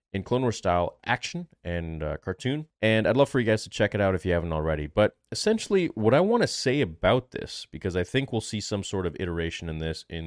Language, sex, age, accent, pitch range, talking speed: English, male, 30-49, American, 85-120 Hz, 250 wpm